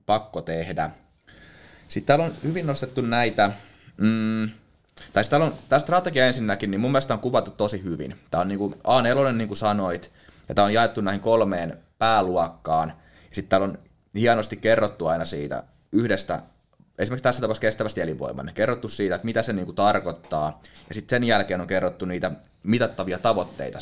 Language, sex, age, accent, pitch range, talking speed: Finnish, male, 20-39, native, 90-115 Hz, 165 wpm